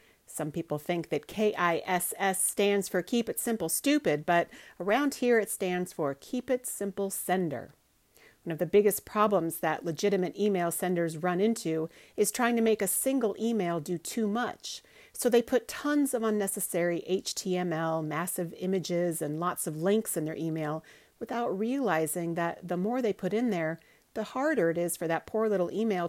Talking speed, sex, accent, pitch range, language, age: 175 wpm, female, American, 170-230 Hz, English, 40-59